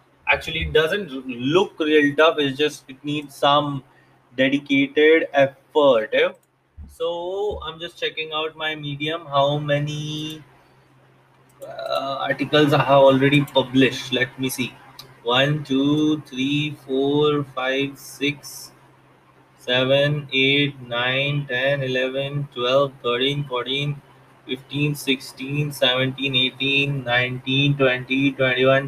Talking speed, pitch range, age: 105 wpm, 135-150 Hz, 20-39